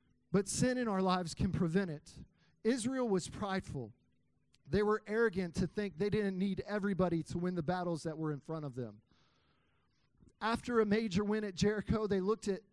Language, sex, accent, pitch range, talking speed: English, male, American, 180-220 Hz, 180 wpm